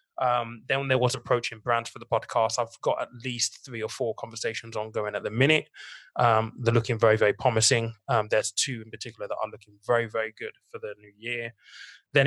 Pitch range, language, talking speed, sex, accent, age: 115-130 Hz, English, 215 wpm, male, British, 20-39